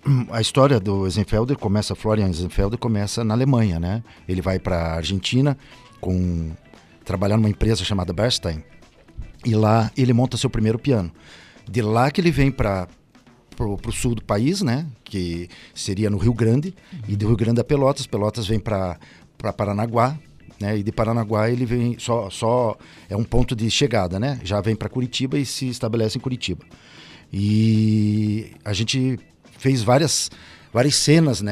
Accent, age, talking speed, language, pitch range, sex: Brazilian, 50-69, 165 wpm, Portuguese, 105-135 Hz, male